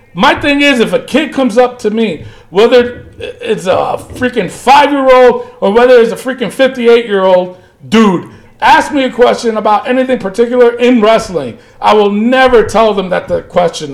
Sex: male